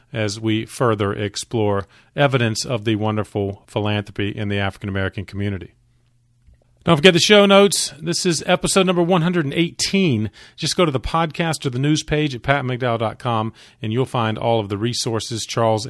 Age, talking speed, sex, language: 40-59, 160 wpm, male, English